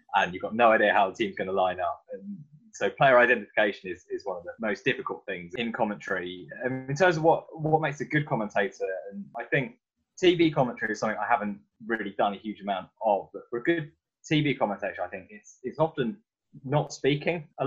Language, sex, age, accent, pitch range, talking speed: English, male, 20-39, British, 110-155 Hz, 220 wpm